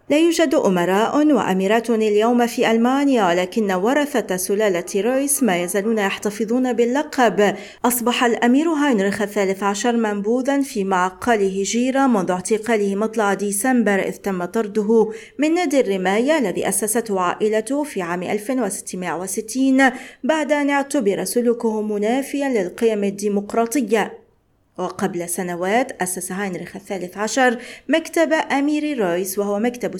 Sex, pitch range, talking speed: female, 200-245 Hz, 115 wpm